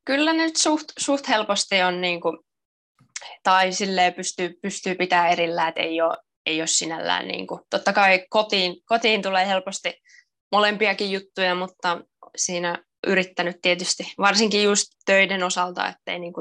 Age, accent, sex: 20-39, native, female